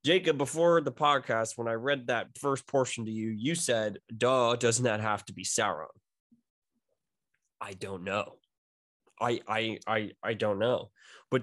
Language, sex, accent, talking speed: English, male, American, 165 wpm